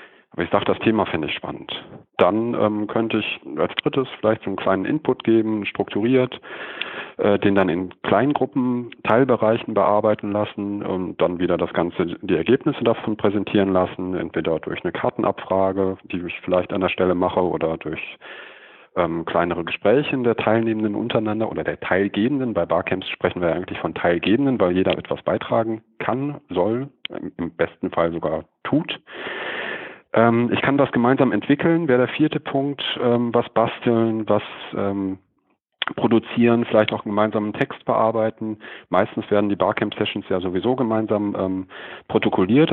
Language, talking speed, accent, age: German, 150 wpm, German, 40-59